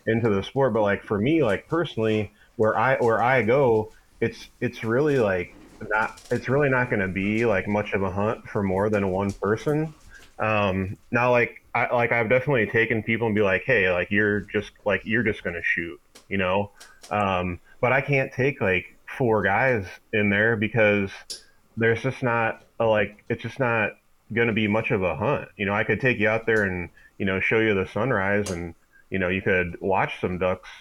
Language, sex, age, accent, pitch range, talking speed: English, male, 30-49, American, 95-115 Hz, 210 wpm